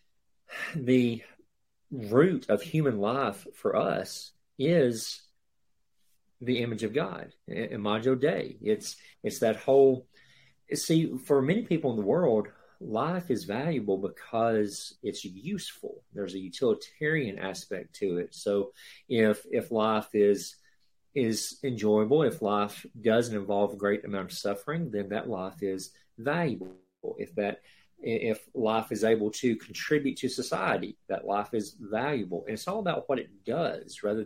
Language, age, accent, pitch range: English, 40-59, American, 100-135 Hz